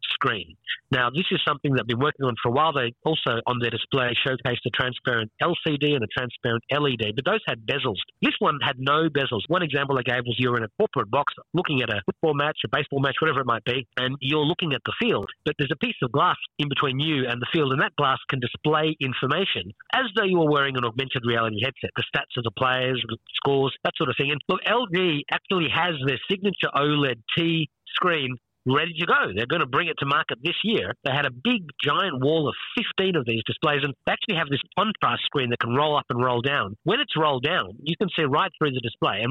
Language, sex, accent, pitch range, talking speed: English, male, Australian, 130-165 Hz, 245 wpm